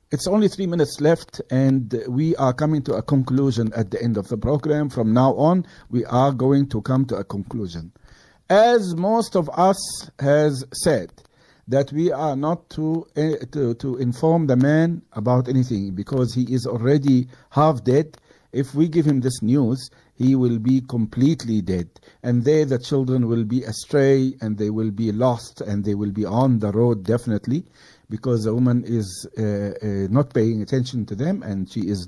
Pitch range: 120-160 Hz